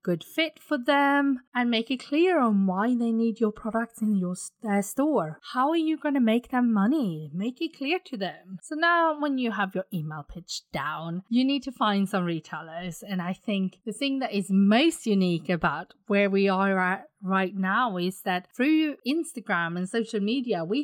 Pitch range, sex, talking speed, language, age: 185-250 Hz, female, 200 wpm, English, 30-49